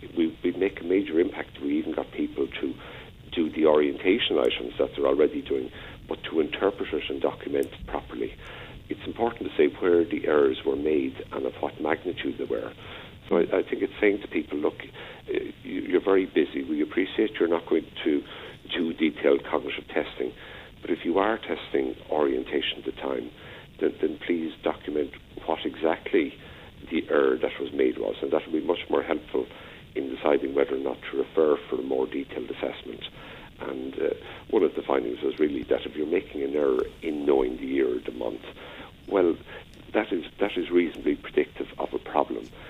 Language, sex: English, male